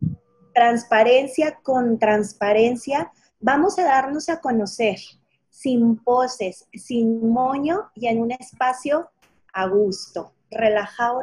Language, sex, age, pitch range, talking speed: Spanish, female, 30-49, 215-260 Hz, 100 wpm